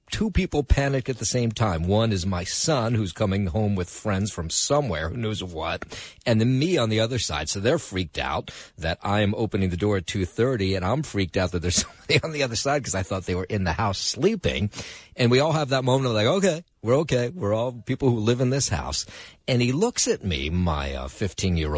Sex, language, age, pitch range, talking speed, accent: male, English, 50-69, 90-130 Hz, 245 wpm, American